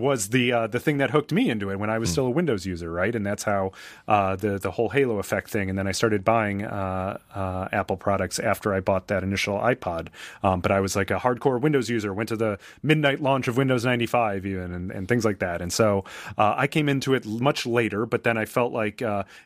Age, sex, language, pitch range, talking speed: 30-49, male, English, 100-125 Hz, 250 wpm